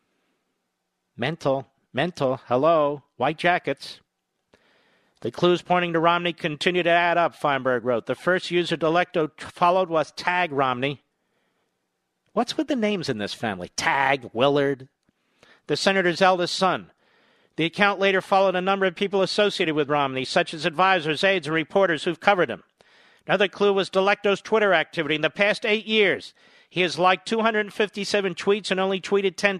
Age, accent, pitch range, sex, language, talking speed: 50-69, American, 155-190 Hz, male, English, 155 wpm